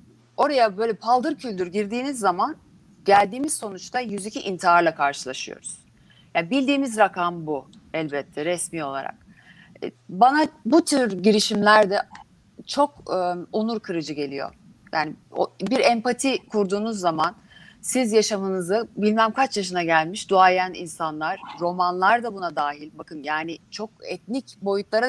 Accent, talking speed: native, 115 wpm